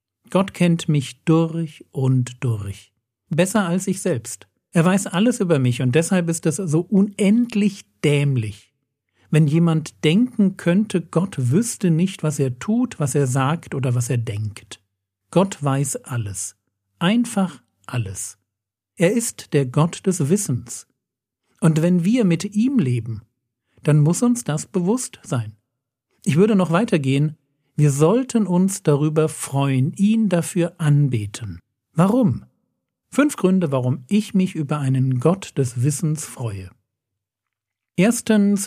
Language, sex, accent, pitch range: German, male, German, 130-185 Hz